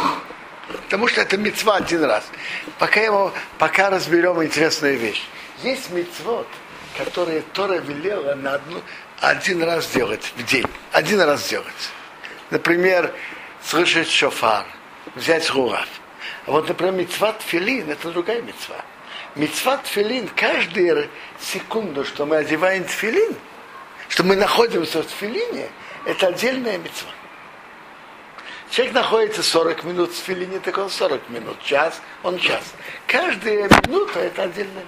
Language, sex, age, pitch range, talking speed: Russian, male, 60-79, 165-220 Hz, 120 wpm